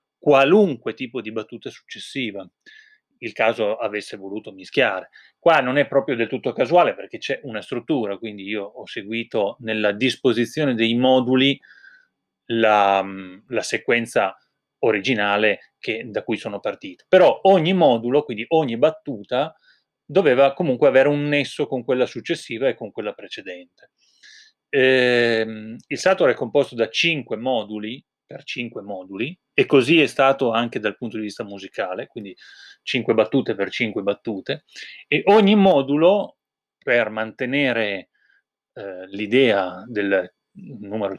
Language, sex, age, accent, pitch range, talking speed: Italian, male, 30-49, native, 110-145 Hz, 135 wpm